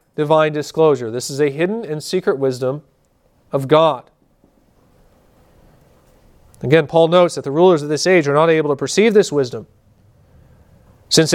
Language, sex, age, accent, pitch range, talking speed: English, male, 40-59, American, 150-190 Hz, 150 wpm